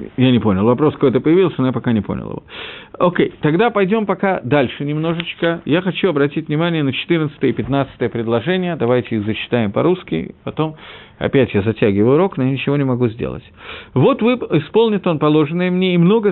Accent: native